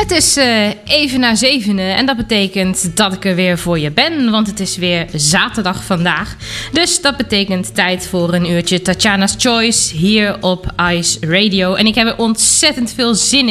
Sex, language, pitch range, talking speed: female, Dutch, 180-230 Hz, 180 wpm